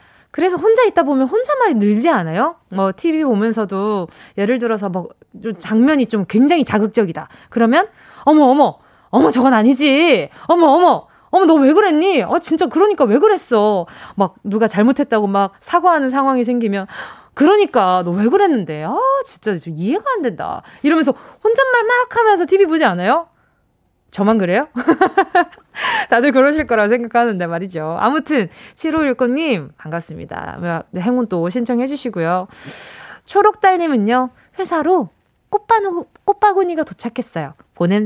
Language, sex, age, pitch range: Korean, female, 20-39, 210-335 Hz